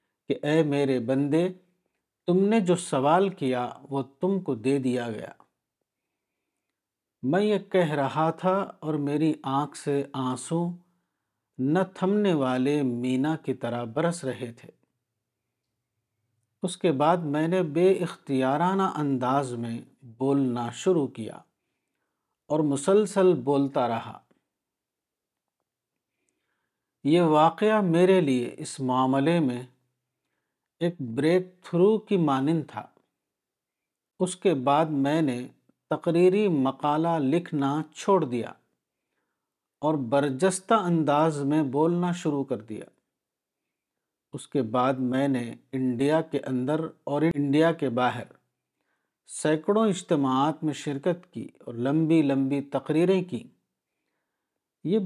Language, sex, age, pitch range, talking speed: Urdu, male, 50-69, 130-175 Hz, 115 wpm